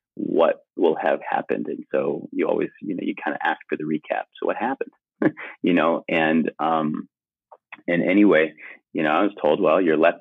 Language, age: English, 30-49